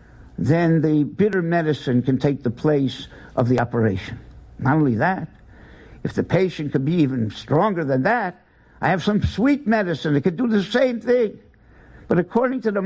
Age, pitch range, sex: 60-79, 130-195 Hz, male